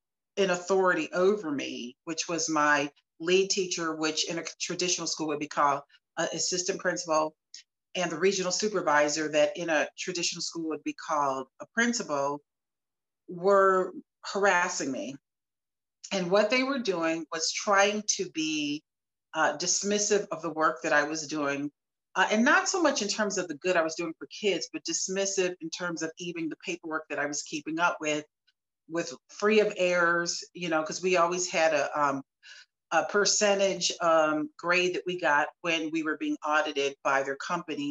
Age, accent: 40-59, American